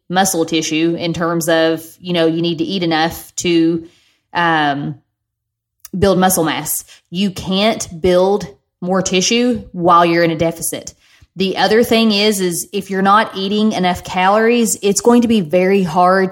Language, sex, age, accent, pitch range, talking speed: English, female, 20-39, American, 170-190 Hz, 160 wpm